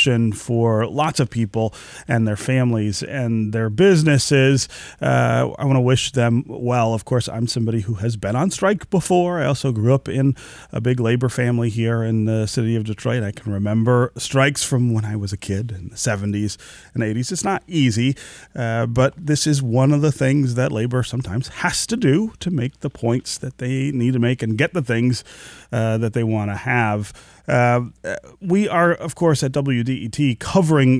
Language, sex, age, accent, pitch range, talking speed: English, male, 30-49, American, 110-140 Hz, 195 wpm